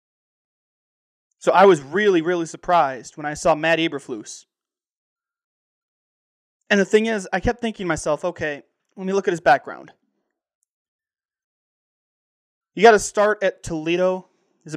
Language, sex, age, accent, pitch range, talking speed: English, male, 20-39, American, 150-190 Hz, 140 wpm